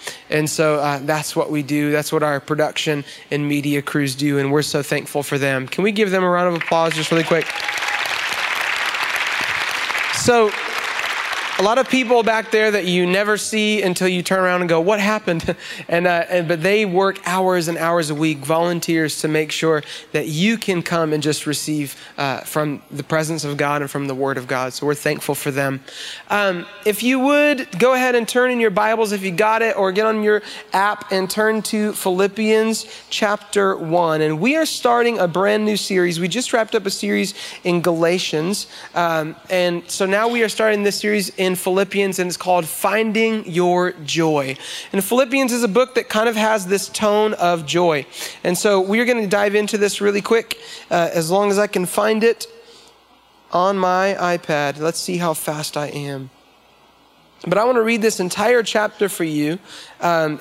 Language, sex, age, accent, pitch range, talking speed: English, male, 30-49, American, 160-215 Hz, 200 wpm